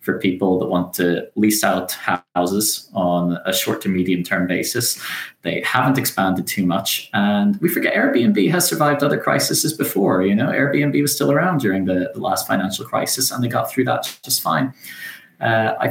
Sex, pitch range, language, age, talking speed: male, 95-130 Hz, English, 30-49, 190 wpm